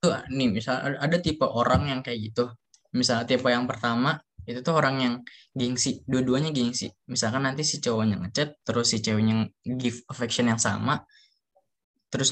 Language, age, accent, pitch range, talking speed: Indonesian, 20-39, native, 115-140 Hz, 165 wpm